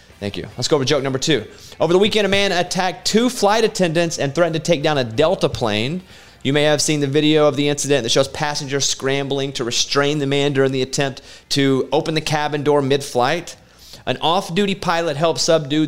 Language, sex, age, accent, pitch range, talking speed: English, male, 30-49, American, 120-160 Hz, 210 wpm